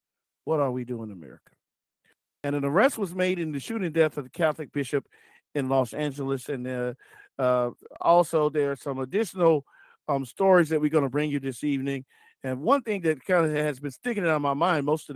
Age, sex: 50-69, male